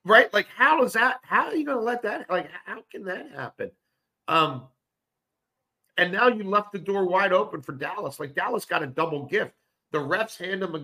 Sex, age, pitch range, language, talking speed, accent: male, 50-69, 125-170 Hz, English, 215 wpm, American